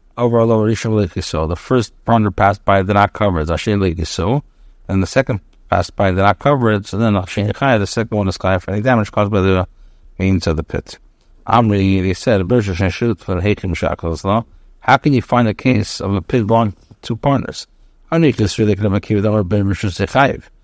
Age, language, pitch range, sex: 60-79, English, 95-110 Hz, male